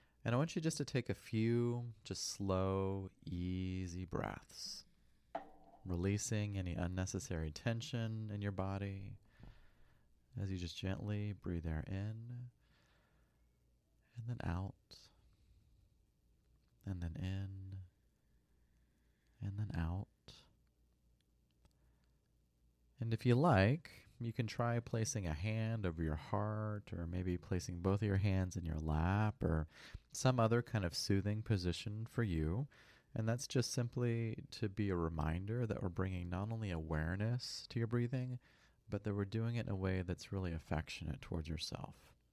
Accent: American